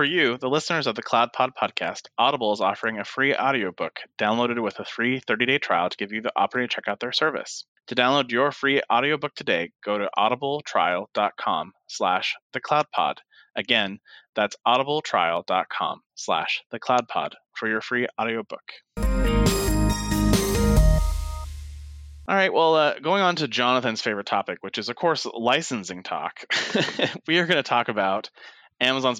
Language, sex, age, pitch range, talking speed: English, male, 20-39, 105-125 Hz, 155 wpm